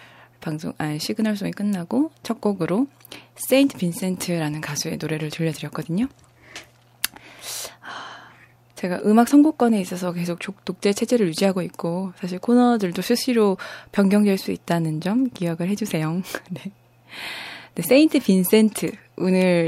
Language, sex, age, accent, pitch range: Korean, female, 20-39, native, 155-200 Hz